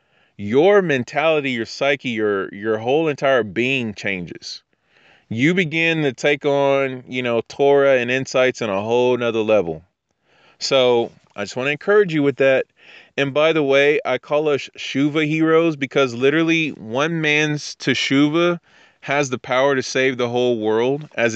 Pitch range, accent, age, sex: 115-145 Hz, American, 20-39, male